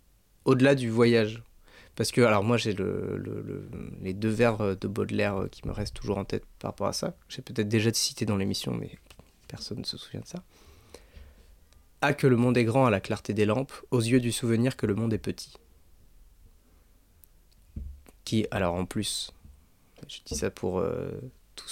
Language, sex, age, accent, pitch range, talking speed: French, male, 20-39, French, 95-120 Hz, 190 wpm